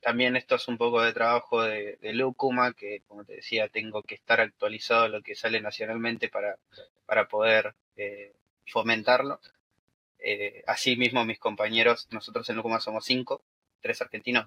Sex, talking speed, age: male, 160 wpm, 20-39